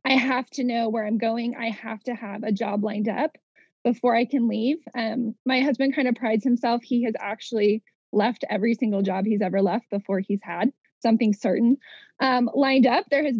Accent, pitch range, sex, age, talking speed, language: American, 225-275 Hz, female, 20-39, 205 wpm, English